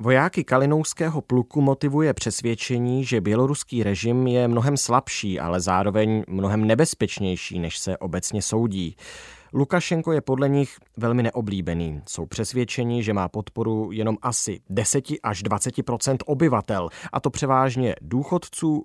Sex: male